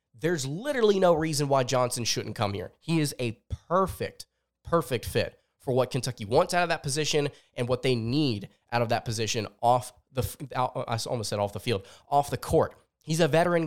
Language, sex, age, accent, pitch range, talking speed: English, male, 20-39, American, 115-150 Hz, 200 wpm